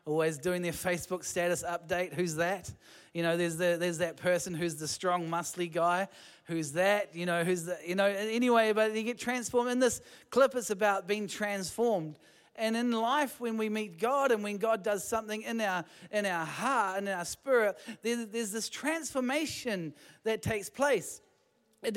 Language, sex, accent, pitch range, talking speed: English, male, Australian, 190-245 Hz, 185 wpm